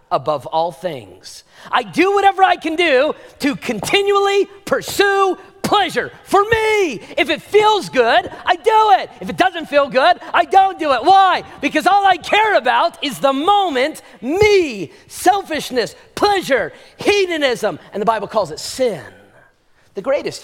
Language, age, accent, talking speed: English, 40-59, American, 155 wpm